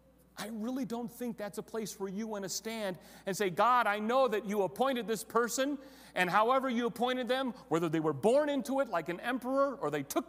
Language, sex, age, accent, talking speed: English, male, 40-59, American, 225 wpm